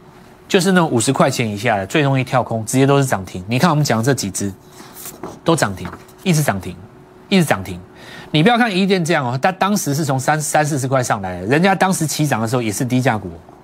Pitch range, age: 110-160 Hz, 30-49